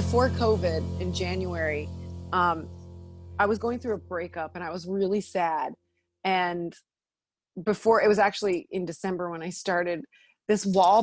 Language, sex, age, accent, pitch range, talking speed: English, female, 30-49, American, 175-235 Hz, 150 wpm